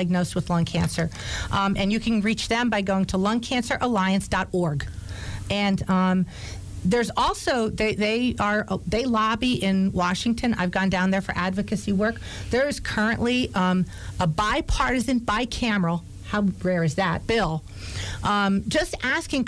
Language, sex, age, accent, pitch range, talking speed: English, female, 40-59, American, 180-225 Hz, 145 wpm